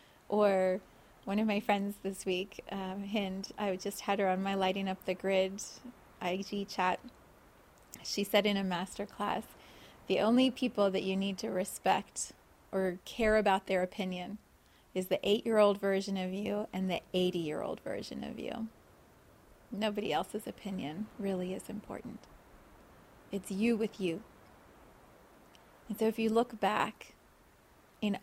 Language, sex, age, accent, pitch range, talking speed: English, female, 30-49, American, 195-235 Hz, 145 wpm